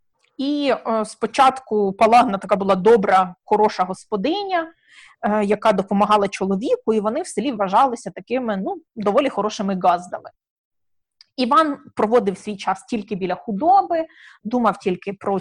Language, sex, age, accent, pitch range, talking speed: Ukrainian, female, 20-39, native, 200-255 Hz, 120 wpm